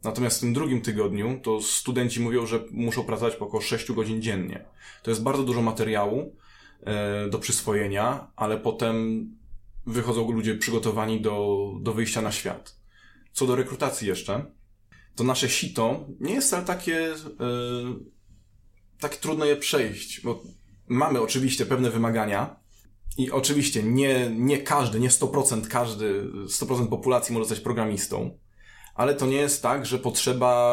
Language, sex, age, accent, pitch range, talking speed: Polish, male, 20-39, native, 110-125 Hz, 145 wpm